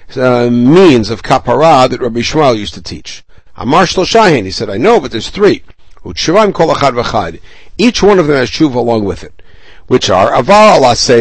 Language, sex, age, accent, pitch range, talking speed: English, male, 60-79, American, 105-155 Hz, 175 wpm